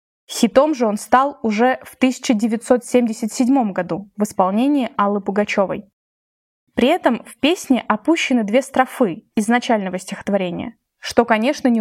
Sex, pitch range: female, 205-260 Hz